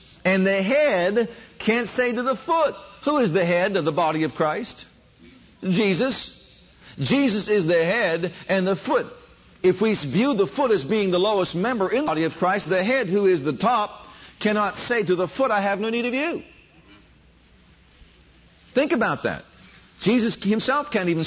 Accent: American